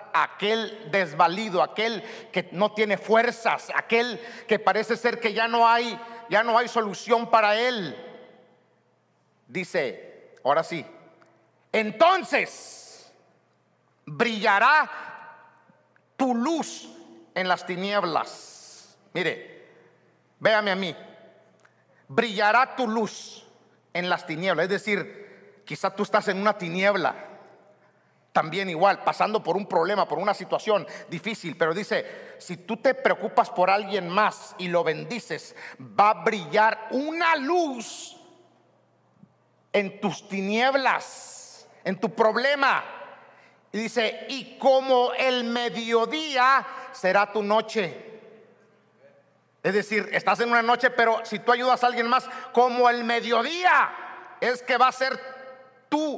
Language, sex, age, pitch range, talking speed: Spanish, male, 50-69, 205-250 Hz, 120 wpm